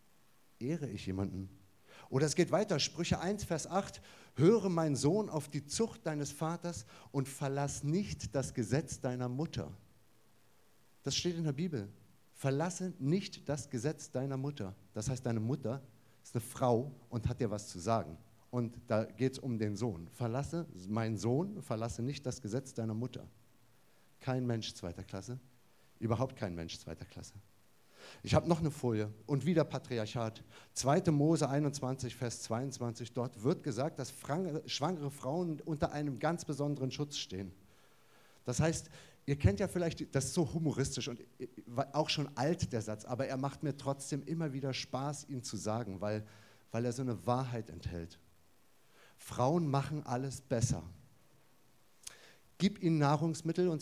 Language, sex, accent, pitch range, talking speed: German, male, German, 110-150 Hz, 160 wpm